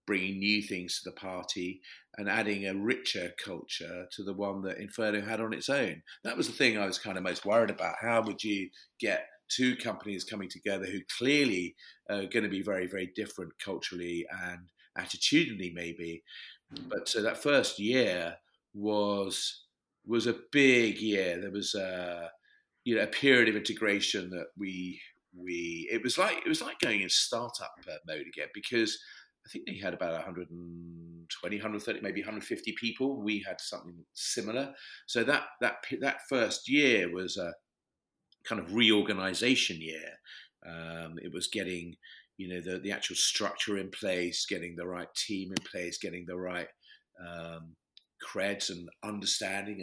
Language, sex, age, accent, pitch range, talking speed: English, male, 40-59, British, 90-105 Hz, 165 wpm